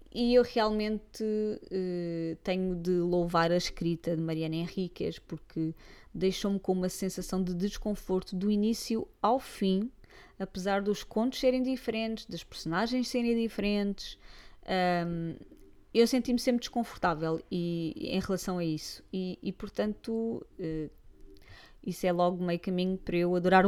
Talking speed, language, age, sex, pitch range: 125 wpm, Portuguese, 20-39, female, 165-205 Hz